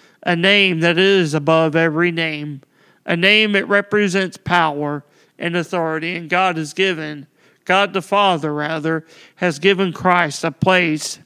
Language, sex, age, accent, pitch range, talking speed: English, male, 40-59, American, 155-190 Hz, 145 wpm